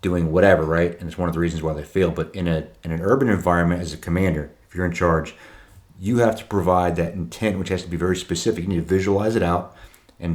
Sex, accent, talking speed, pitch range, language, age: male, American, 260 wpm, 85-95 Hz, English, 30-49